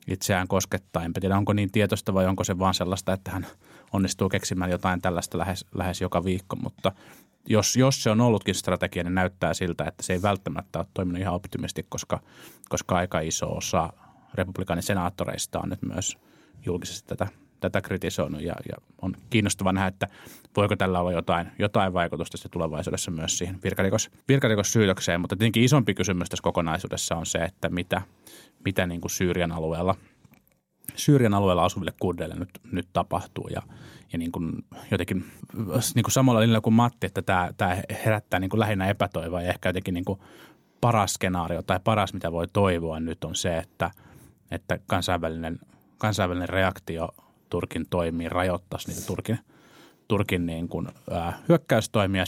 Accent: native